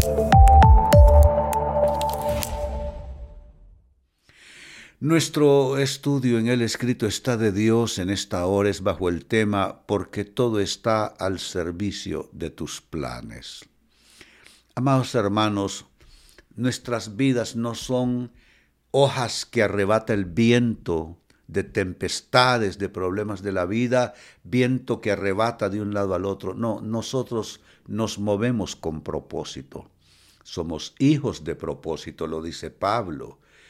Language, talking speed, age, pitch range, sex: Spanish, 110 wpm, 60-79, 90-120 Hz, male